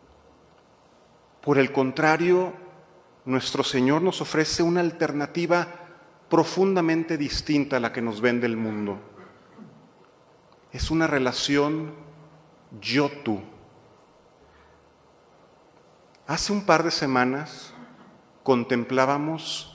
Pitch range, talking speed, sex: 125-155 Hz, 85 wpm, male